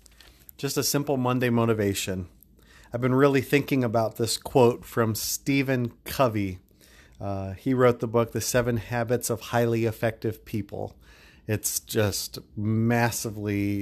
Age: 30-49